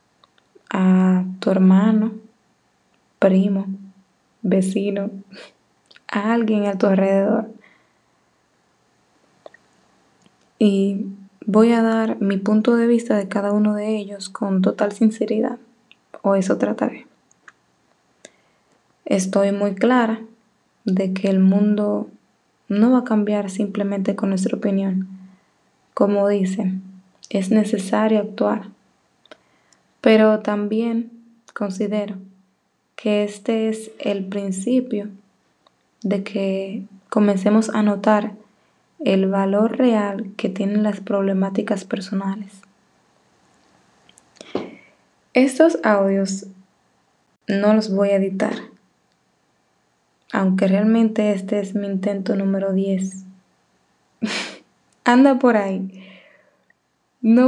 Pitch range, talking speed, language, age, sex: 195-220 Hz, 95 wpm, Spanish, 20-39, female